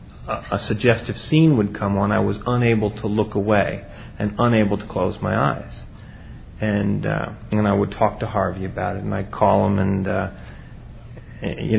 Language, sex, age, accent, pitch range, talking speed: English, male, 40-59, American, 105-120 Hz, 185 wpm